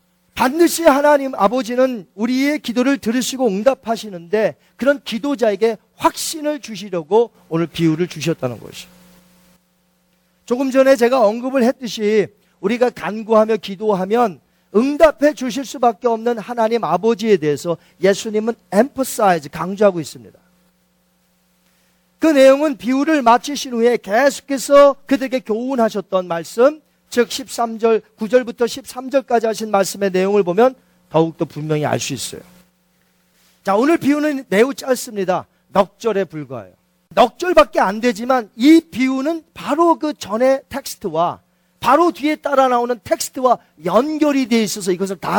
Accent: native